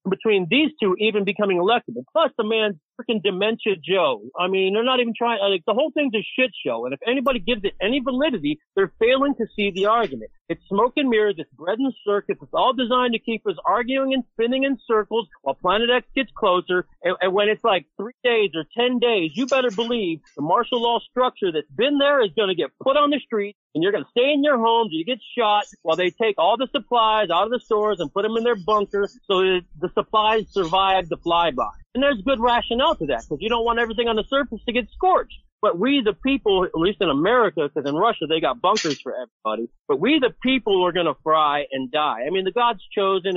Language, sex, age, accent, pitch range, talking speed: English, male, 40-59, American, 190-250 Hz, 235 wpm